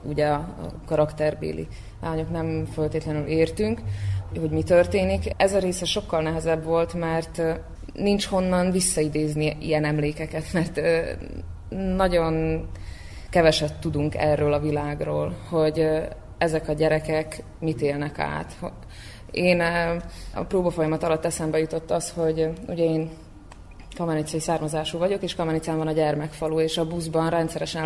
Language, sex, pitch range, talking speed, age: Hungarian, female, 155-175 Hz, 125 wpm, 20-39